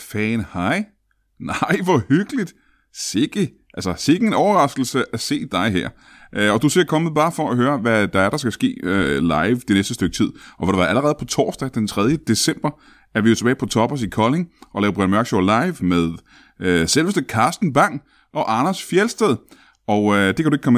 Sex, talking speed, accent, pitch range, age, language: male, 210 wpm, native, 105-150 Hz, 30-49, Danish